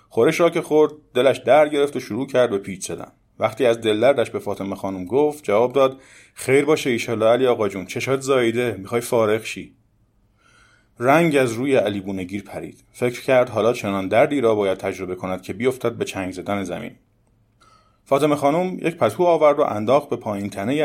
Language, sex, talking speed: Persian, male, 185 wpm